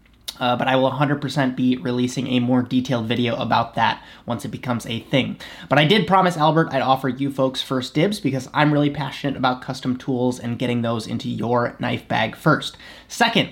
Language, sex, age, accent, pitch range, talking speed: English, male, 20-39, American, 130-165 Hz, 200 wpm